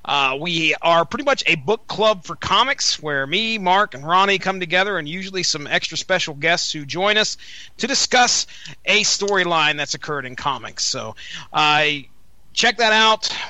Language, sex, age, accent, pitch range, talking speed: English, male, 30-49, American, 165-215 Hz, 175 wpm